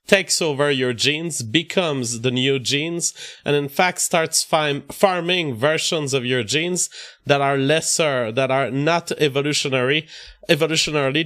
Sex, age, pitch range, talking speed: male, 30-49, 135-155 Hz, 135 wpm